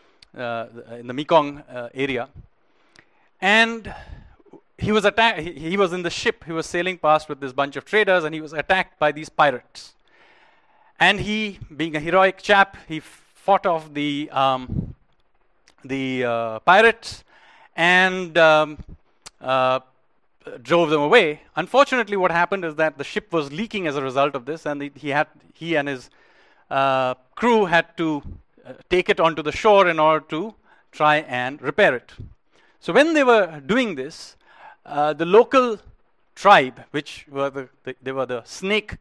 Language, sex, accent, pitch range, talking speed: English, male, Indian, 140-185 Hz, 165 wpm